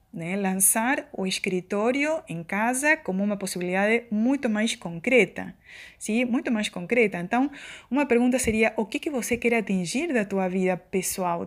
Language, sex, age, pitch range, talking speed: Portuguese, female, 20-39, 180-225 Hz, 155 wpm